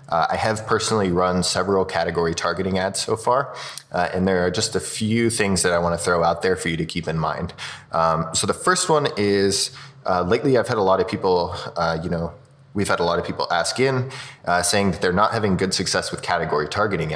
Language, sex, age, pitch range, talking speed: English, male, 20-39, 85-105 Hz, 240 wpm